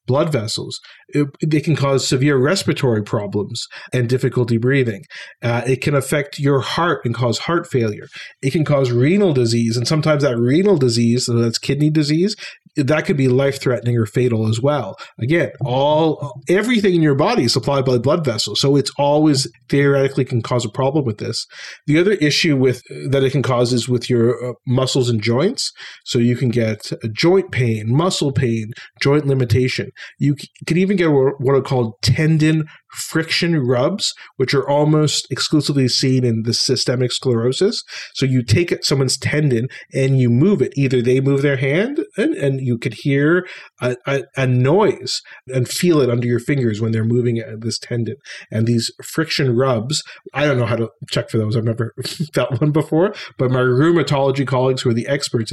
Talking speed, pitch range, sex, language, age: 180 wpm, 120-150 Hz, male, English, 40-59